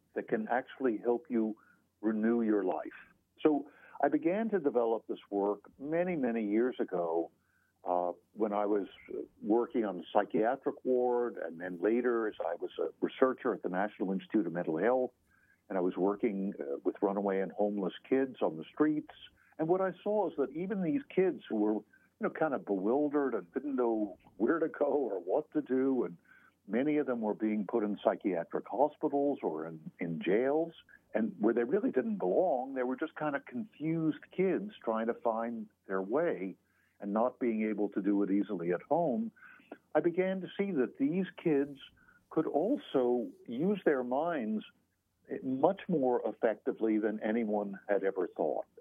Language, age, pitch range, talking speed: English, 50-69, 105-155 Hz, 175 wpm